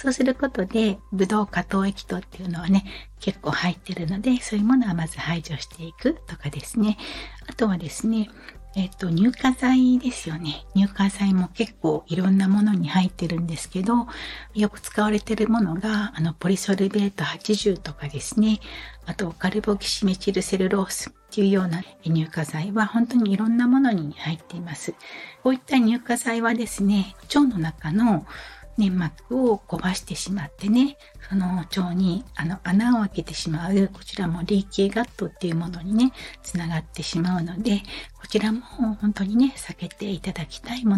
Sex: female